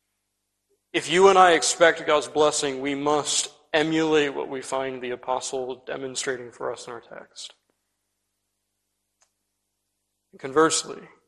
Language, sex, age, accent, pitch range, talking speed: English, male, 40-59, American, 130-160 Hz, 115 wpm